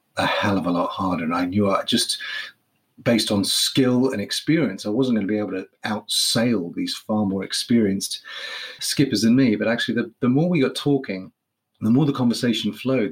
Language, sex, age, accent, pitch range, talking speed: English, male, 30-49, British, 105-140 Hz, 200 wpm